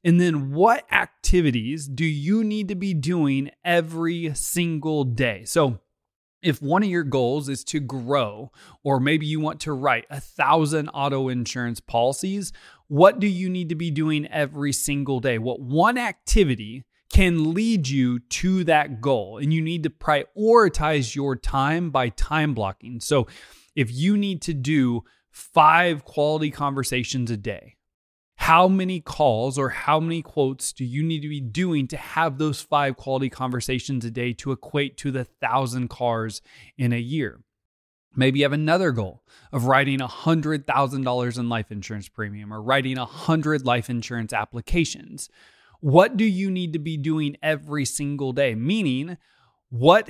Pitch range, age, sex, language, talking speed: 125-160 Hz, 20-39, male, English, 160 wpm